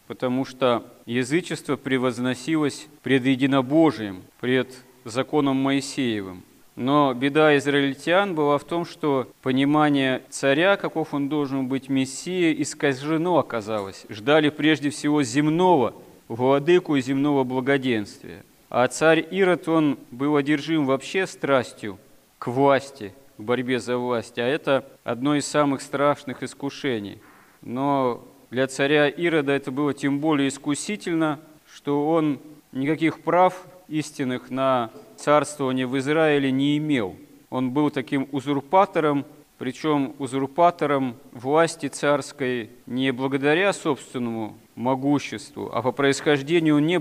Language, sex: Russian, male